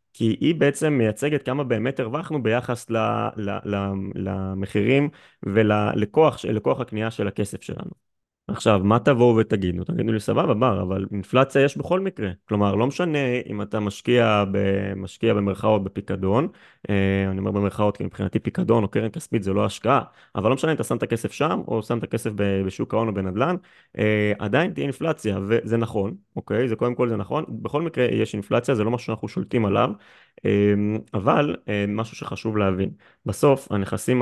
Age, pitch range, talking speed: 20-39, 100-125 Hz, 160 wpm